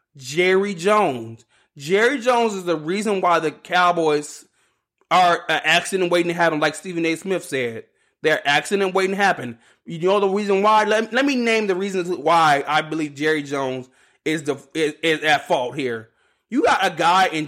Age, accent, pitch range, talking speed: 20-39, American, 155-225 Hz, 190 wpm